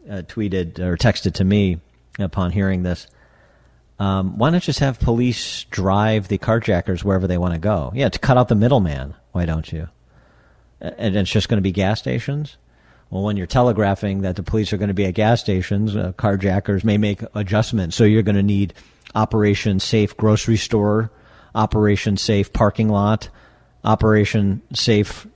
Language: English